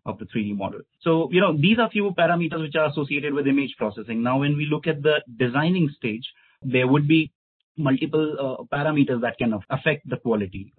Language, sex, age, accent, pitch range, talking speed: English, male, 30-49, Indian, 115-145 Hz, 200 wpm